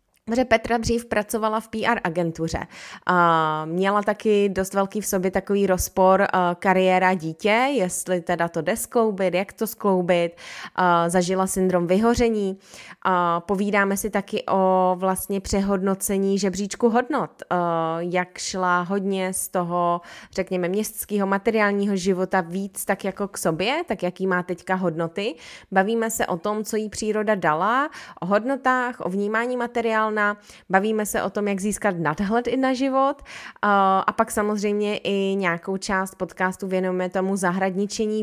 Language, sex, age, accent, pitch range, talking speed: Czech, female, 20-39, native, 185-220 Hz, 135 wpm